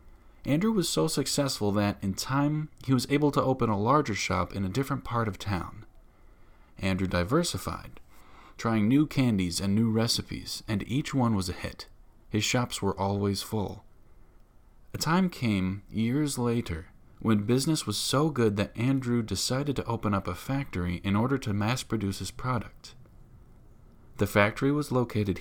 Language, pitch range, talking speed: English, 95-120 Hz, 160 wpm